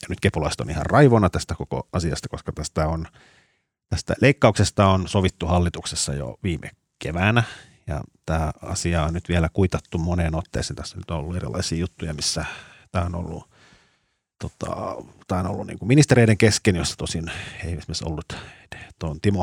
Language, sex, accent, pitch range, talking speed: Finnish, male, native, 80-110 Hz, 145 wpm